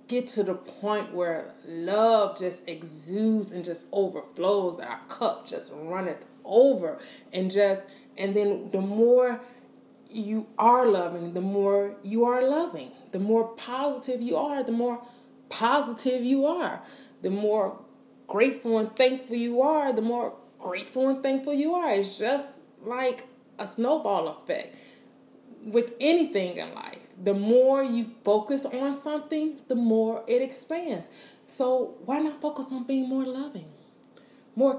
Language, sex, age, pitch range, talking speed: English, female, 30-49, 200-260 Hz, 145 wpm